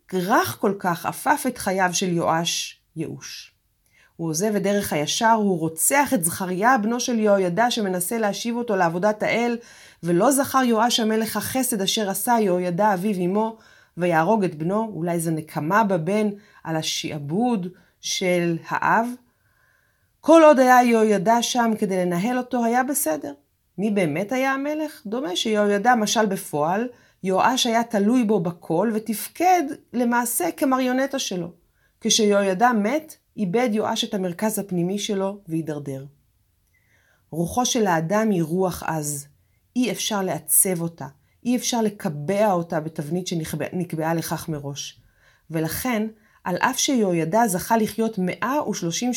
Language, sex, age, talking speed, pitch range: Hebrew, female, 30-49, 135 wpm, 175-235 Hz